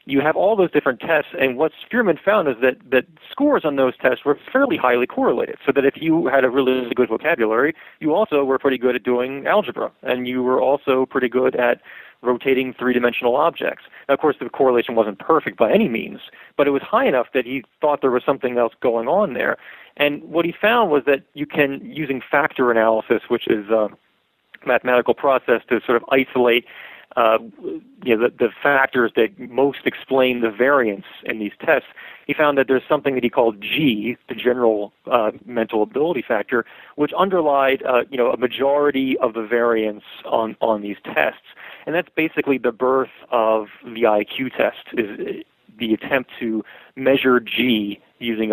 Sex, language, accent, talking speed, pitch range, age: male, English, American, 180 wpm, 115-140 Hz, 40-59